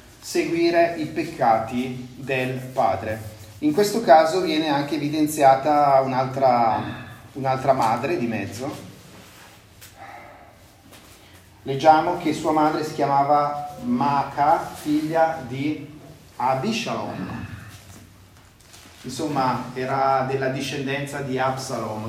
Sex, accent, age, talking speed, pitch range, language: male, native, 30-49, 85 wpm, 115-150 Hz, Italian